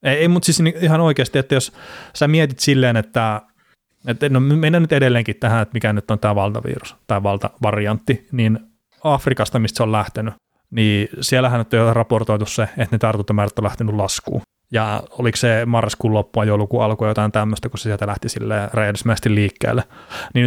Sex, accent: male, native